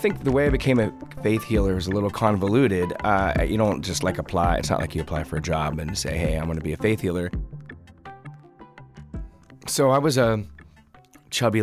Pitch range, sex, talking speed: 85-105 Hz, male, 215 wpm